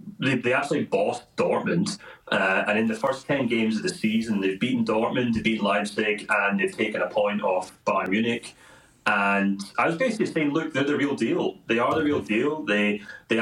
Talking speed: 205 wpm